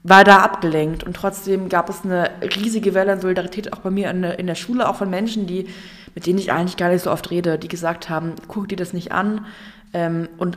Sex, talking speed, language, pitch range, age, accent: female, 225 wpm, German, 165-185 Hz, 20-39, German